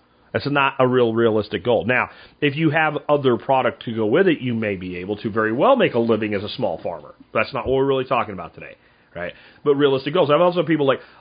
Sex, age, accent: male, 40-59, American